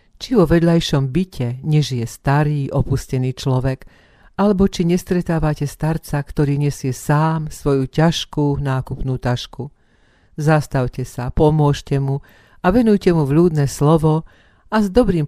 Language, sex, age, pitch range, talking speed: Slovak, female, 50-69, 130-155 Hz, 120 wpm